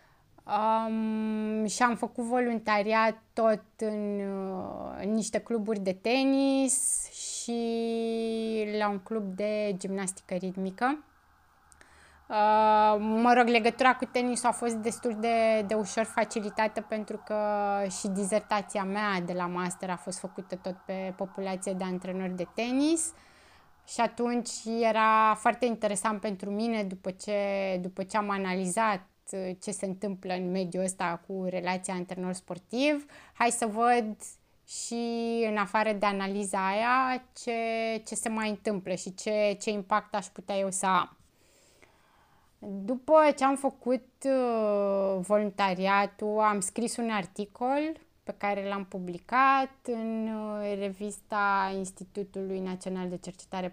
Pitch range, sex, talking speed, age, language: 195-230 Hz, female, 125 wpm, 20-39, Romanian